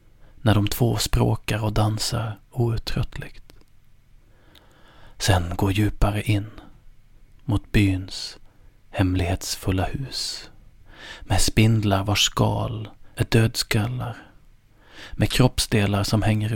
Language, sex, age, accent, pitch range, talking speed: Swedish, male, 30-49, native, 100-115 Hz, 90 wpm